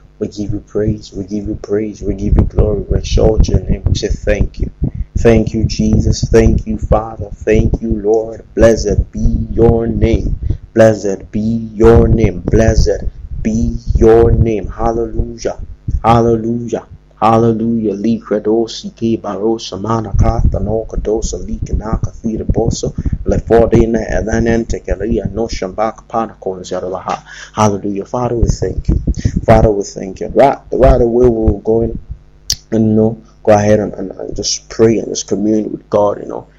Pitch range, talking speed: 105-115 Hz, 155 wpm